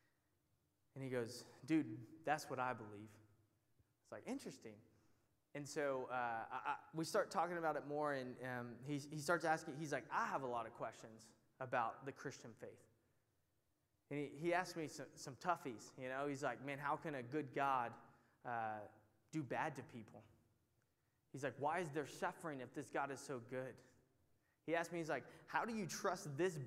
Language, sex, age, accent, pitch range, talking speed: English, male, 20-39, American, 120-150 Hz, 190 wpm